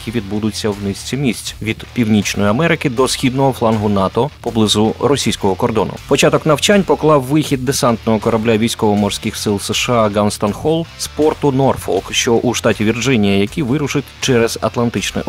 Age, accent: 30-49, native